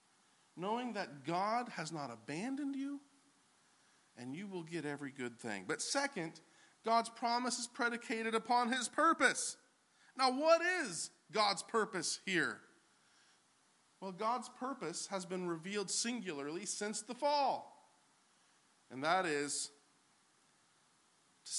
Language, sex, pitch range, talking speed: English, male, 180-245 Hz, 120 wpm